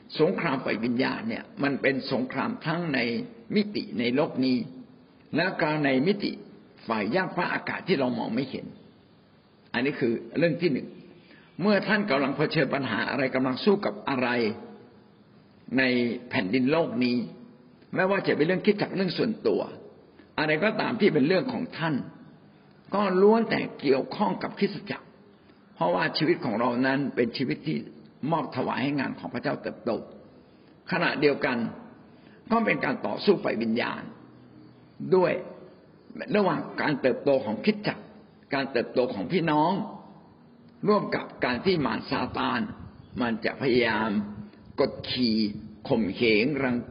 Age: 60-79